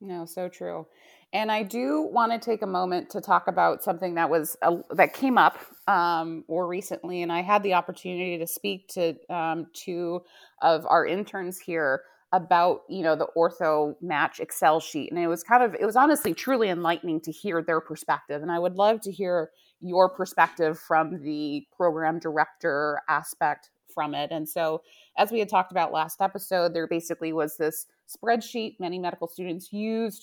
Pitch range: 160-185 Hz